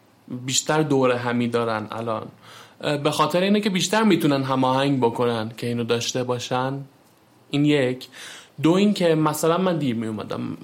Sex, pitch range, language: male, 130-165 Hz, Persian